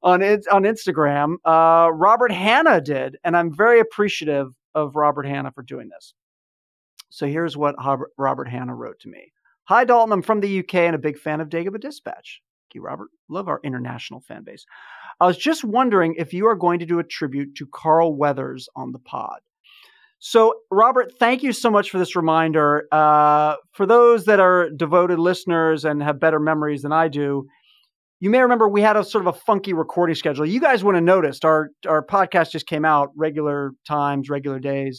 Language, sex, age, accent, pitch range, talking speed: English, male, 40-59, American, 150-210 Hz, 195 wpm